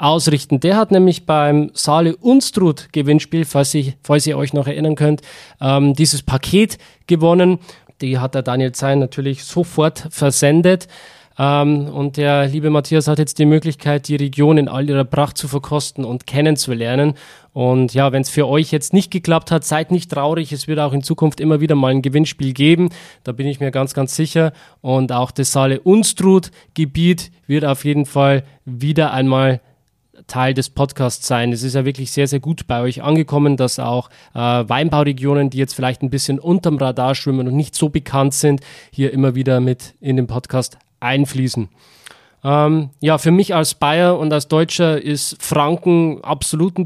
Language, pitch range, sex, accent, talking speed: German, 135-155 Hz, male, German, 175 wpm